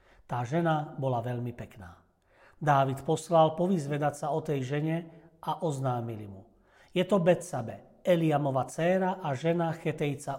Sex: male